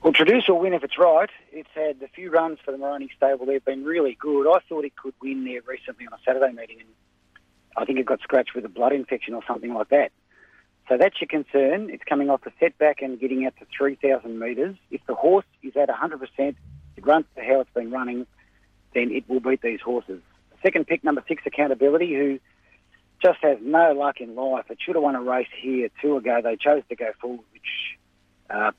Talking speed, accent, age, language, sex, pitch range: 225 wpm, Australian, 40-59, English, male, 120-150 Hz